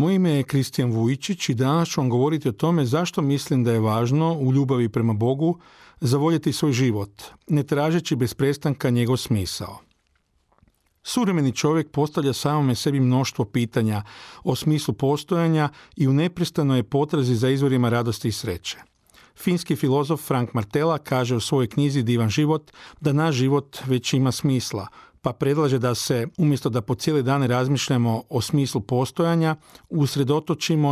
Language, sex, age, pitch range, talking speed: Croatian, male, 40-59, 125-150 Hz, 155 wpm